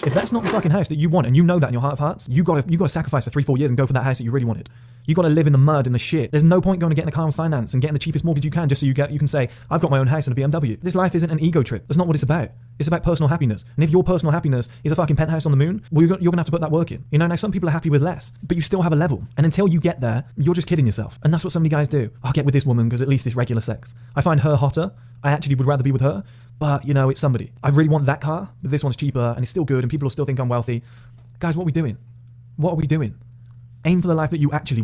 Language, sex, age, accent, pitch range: English, male, 20-39, British, 120-160 Hz